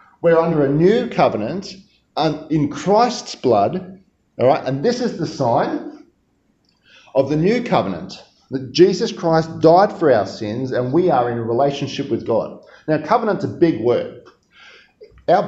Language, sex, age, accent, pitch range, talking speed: English, male, 40-59, Australian, 125-180 Hz, 155 wpm